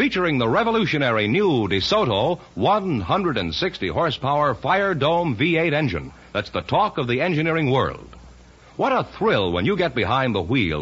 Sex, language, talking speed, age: male, English, 145 wpm, 60-79